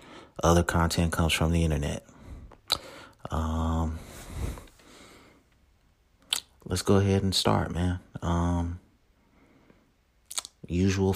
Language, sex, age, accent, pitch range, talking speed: English, male, 30-49, American, 80-100 Hz, 80 wpm